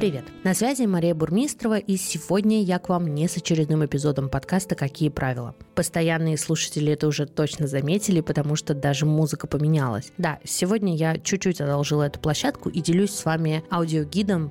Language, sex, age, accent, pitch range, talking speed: Russian, female, 20-39, native, 155-195 Hz, 165 wpm